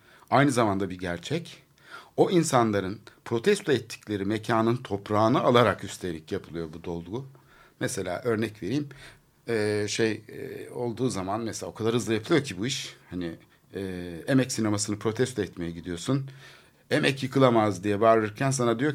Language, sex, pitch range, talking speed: Turkish, male, 95-130 Hz, 135 wpm